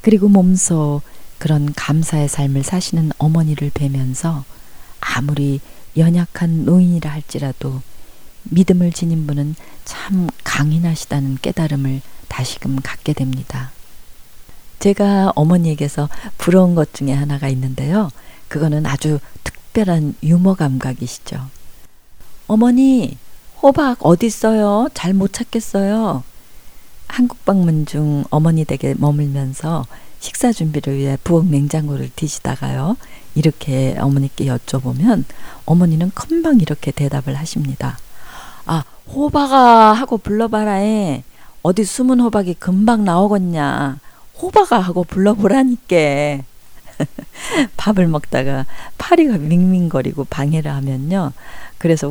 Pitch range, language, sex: 140-190 Hz, Korean, female